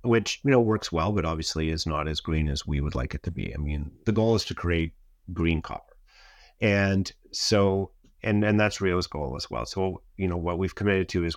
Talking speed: 230 wpm